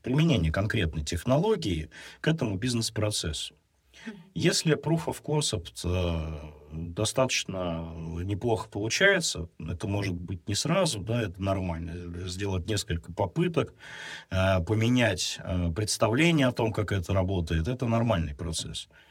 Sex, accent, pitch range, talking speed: male, native, 85-125 Hz, 115 wpm